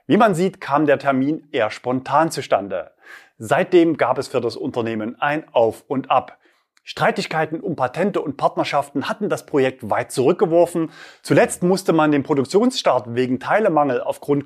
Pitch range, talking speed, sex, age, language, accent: 130-190 Hz, 155 wpm, male, 30-49, German, German